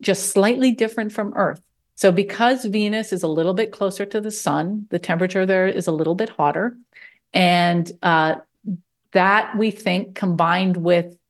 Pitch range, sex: 165-195 Hz, female